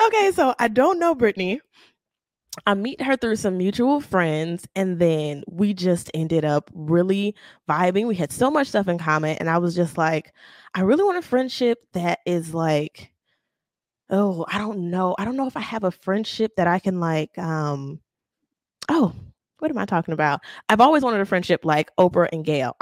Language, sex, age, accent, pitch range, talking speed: English, female, 10-29, American, 170-245 Hz, 190 wpm